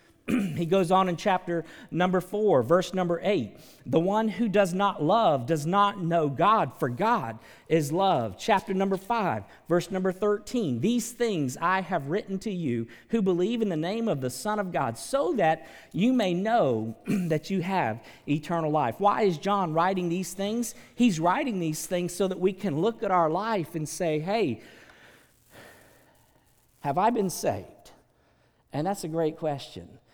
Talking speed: 175 wpm